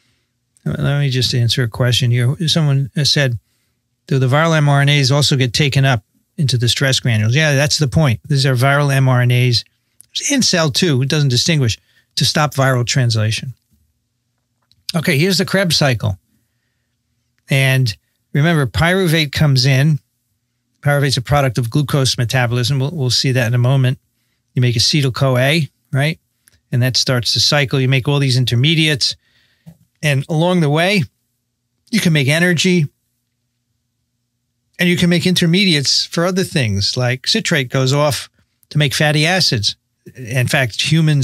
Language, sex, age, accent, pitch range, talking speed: English, male, 40-59, American, 120-150 Hz, 150 wpm